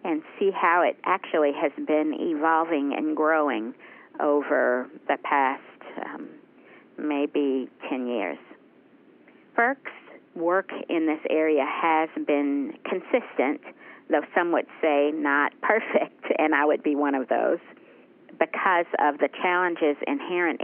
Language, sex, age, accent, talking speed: English, female, 50-69, American, 125 wpm